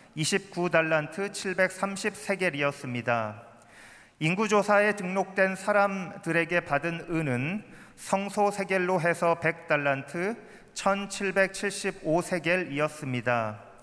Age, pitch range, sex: 40-59, 150-195 Hz, male